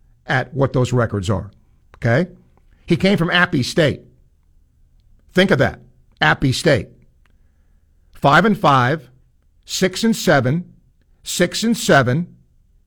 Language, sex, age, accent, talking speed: English, male, 60-79, American, 115 wpm